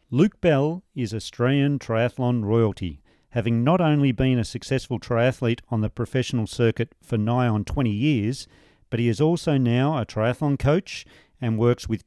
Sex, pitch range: male, 115-145 Hz